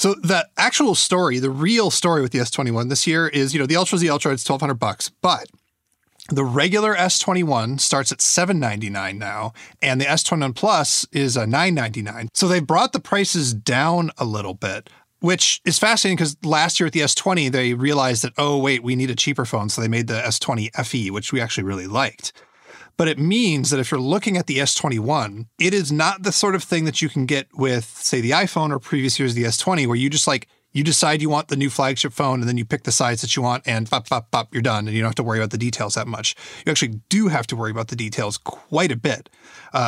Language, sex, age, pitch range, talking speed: English, male, 30-49, 120-160 Hz, 235 wpm